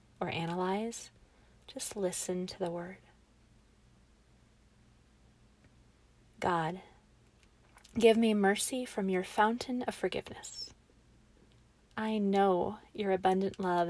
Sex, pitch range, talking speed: female, 180-220 Hz, 90 wpm